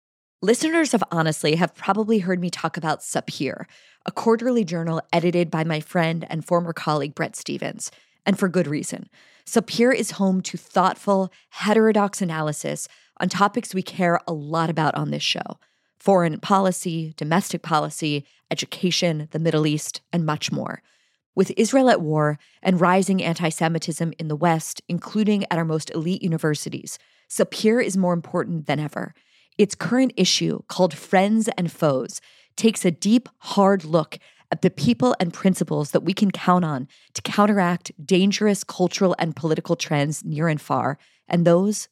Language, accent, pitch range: English, American, 160-195 Hz